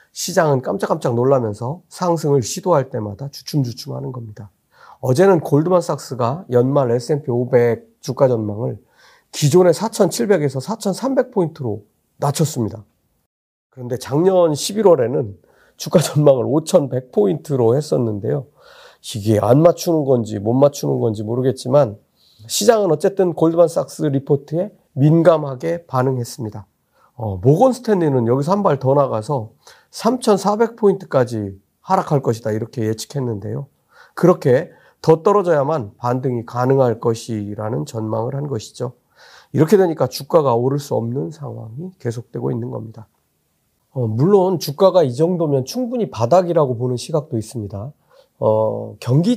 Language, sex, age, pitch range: Korean, male, 40-59, 120-175 Hz